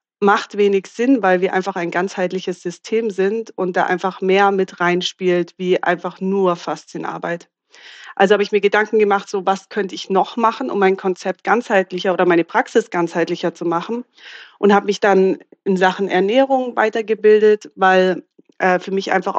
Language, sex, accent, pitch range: German, female, German, 180-215 Hz